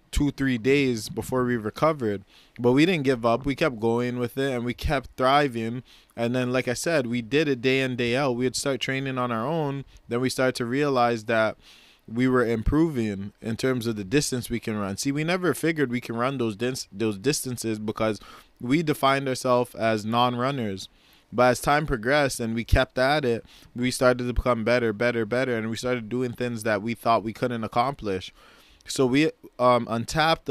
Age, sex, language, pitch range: 20-39, male, English, 115-135 Hz